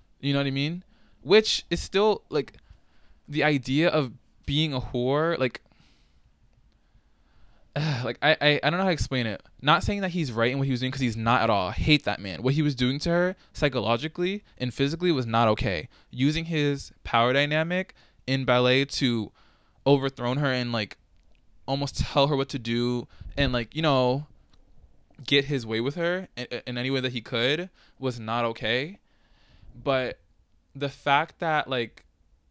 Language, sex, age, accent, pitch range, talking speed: English, male, 20-39, American, 115-145 Hz, 185 wpm